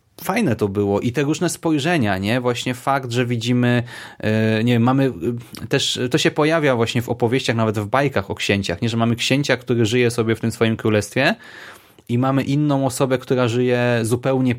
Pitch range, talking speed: 110-140 Hz, 185 wpm